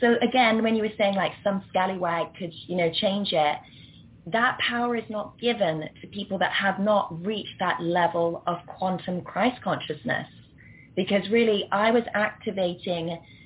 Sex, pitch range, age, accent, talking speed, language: female, 170-210 Hz, 20-39, British, 160 wpm, English